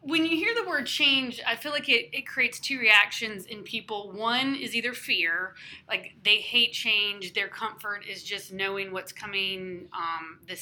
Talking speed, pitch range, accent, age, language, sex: 185 wpm, 190-225 Hz, American, 30-49, English, female